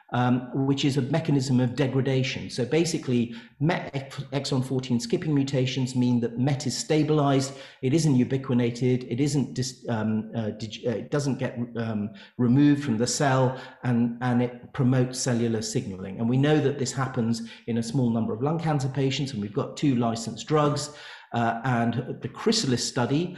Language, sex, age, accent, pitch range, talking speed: English, male, 40-59, British, 120-140 Hz, 175 wpm